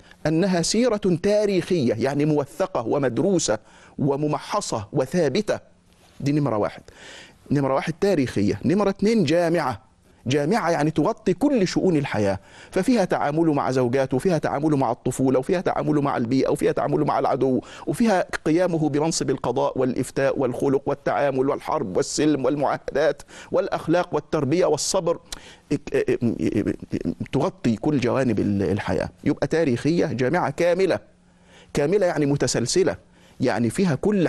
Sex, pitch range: male, 120-165 Hz